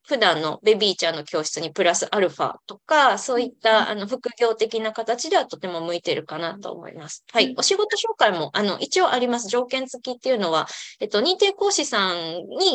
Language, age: Japanese, 20-39